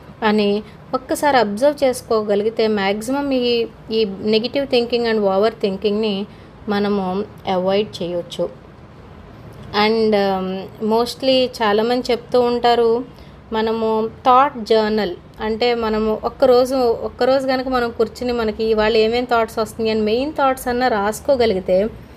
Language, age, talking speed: English, 20-39, 50 wpm